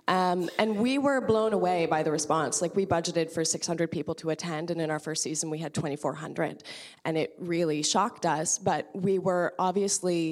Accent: American